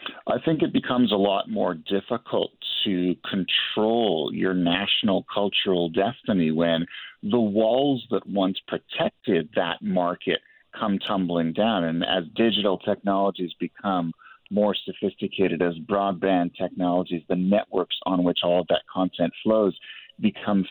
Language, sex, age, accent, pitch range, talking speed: English, male, 50-69, American, 90-105 Hz, 130 wpm